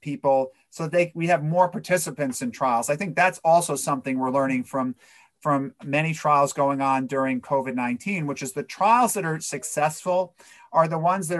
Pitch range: 130-165 Hz